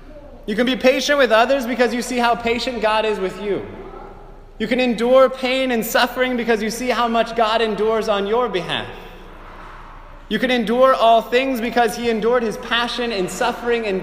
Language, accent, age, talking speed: English, American, 20-39, 190 wpm